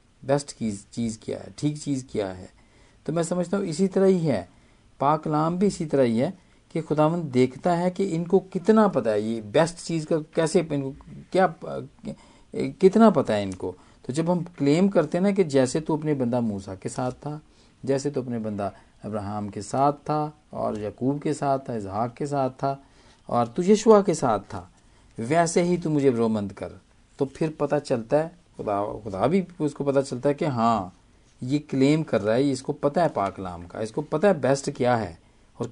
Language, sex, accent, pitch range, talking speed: Hindi, male, native, 110-165 Hz, 195 wpm